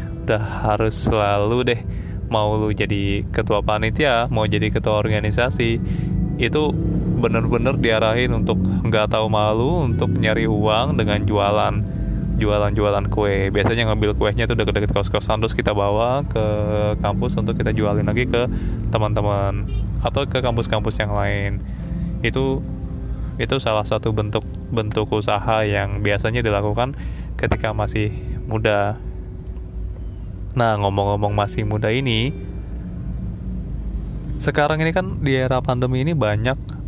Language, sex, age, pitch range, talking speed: Indonesian, male, 20-39, 100-120 Hz, 120 wpm